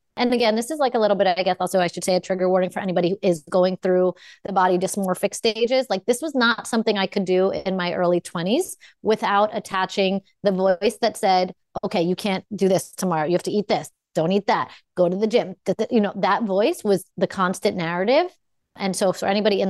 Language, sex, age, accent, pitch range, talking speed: English, female, 30-49, American, 185-230 Hz, 230 wpm